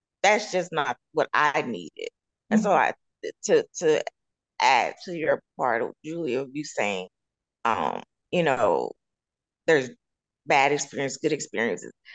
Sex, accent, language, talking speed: female, American, English, 135 wpm